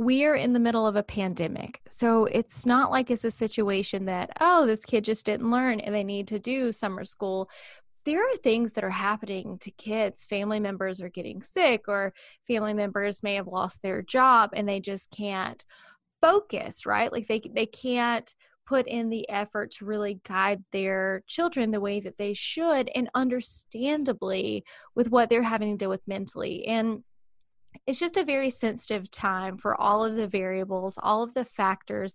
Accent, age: American, 20-39